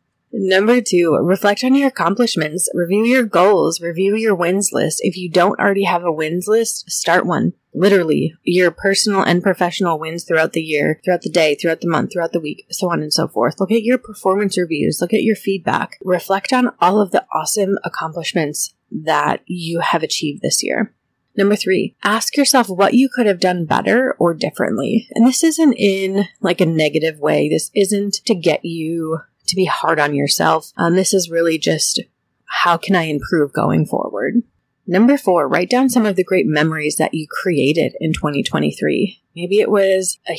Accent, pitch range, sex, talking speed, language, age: American, 165-215 Hz, female, 190 wpm, English, 30-49